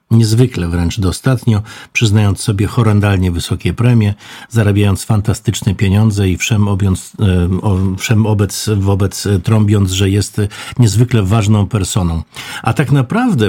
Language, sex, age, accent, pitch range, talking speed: Polish, male, 50-69, native, 100-125 Hz, 115 wpm